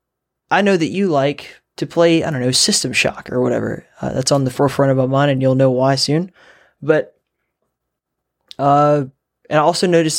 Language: English